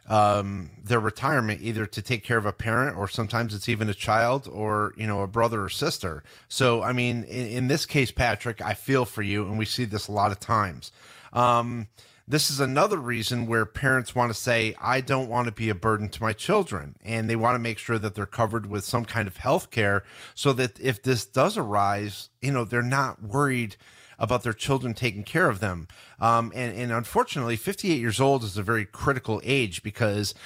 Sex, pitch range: male, 110-130 Hz